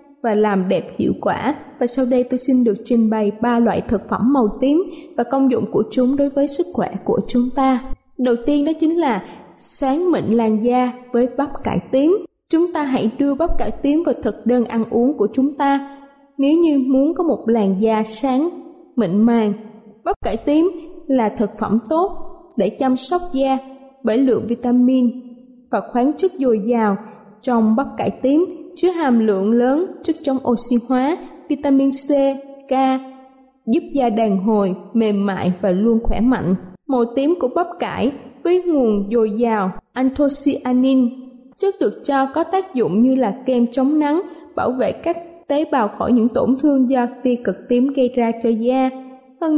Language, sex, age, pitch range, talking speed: Vietnamese, female, 20-39, 230-285 Hz, 185 wpm